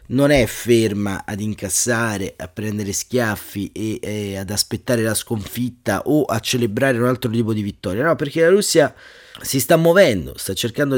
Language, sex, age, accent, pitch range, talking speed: Italian, male, 30-49, native, 105-130 Hz, 170 wpm